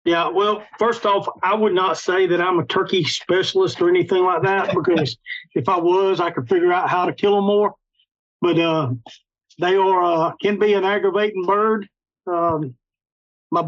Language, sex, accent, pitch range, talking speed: English, male, American, 160-205 Hz, 185 wpm